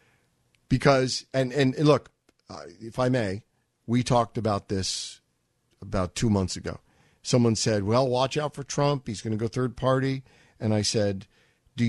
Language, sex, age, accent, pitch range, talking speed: English, male, 50-69, American, 110-155 Hz, 165 wpm